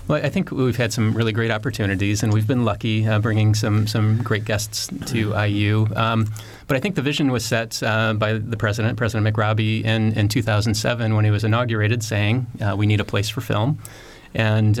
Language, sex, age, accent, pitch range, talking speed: English, male, 30-49, American, 105-120 Hz, 205 wpm